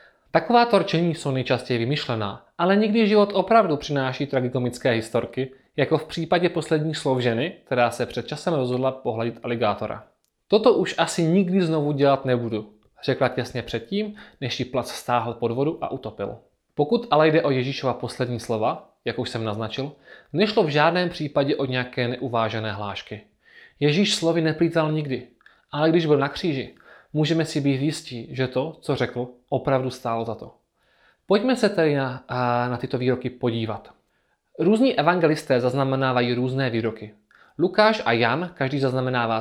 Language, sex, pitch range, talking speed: Czech, male, 120-160 Hz, 155 wpm